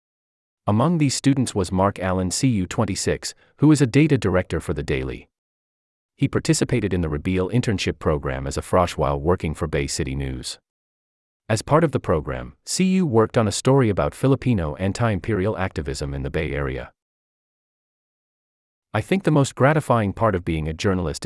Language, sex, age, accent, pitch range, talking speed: English, male, 30-49, American, 75-110 Hz, 165 wpm